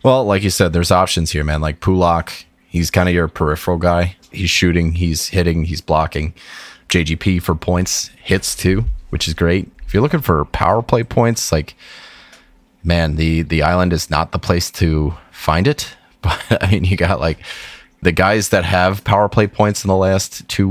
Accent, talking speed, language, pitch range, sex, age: American, 190 wpm, English, 80-95 Hz, male, 30-49